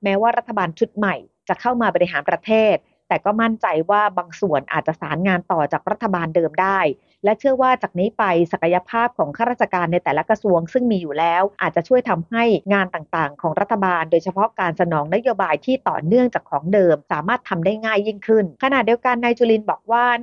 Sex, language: female, Thai